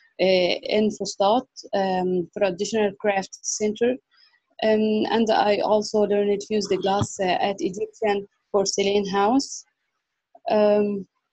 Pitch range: 185-210 Hz